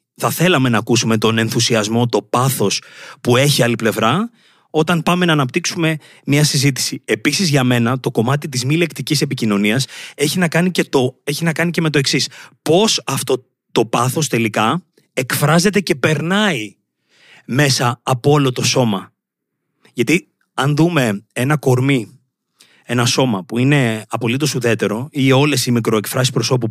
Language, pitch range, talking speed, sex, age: Greek, 120-170 Hz, 145 wpm, male, 30-49